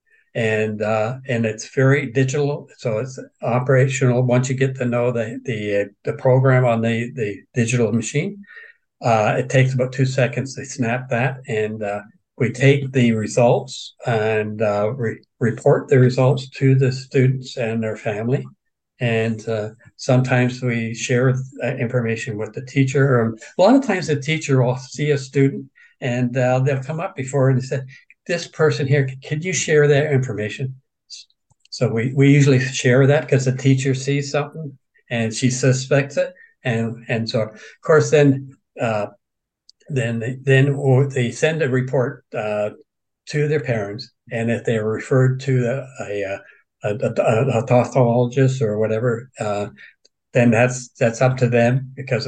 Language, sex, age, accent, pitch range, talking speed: English, male, 60-79, American, 115-135 Hz, 165 wpm